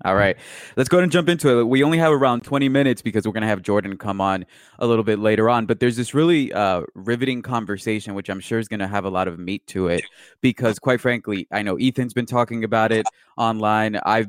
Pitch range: 100-125 Hz